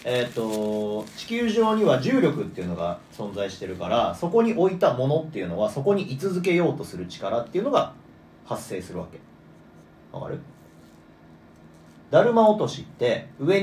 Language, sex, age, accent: Japanese, male, 40-59, native